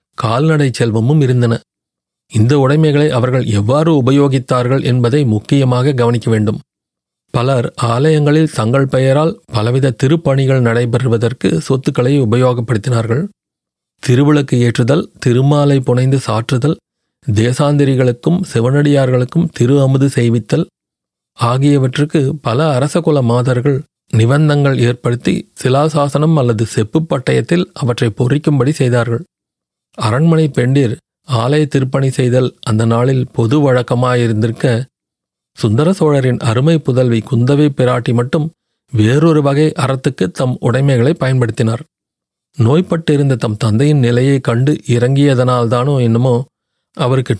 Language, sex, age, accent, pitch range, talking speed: Tamil, male, 40-59, native, 120-145 Hz, 90 wpm